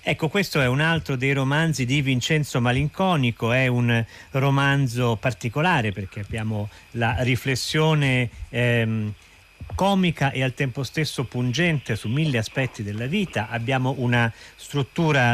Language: Italian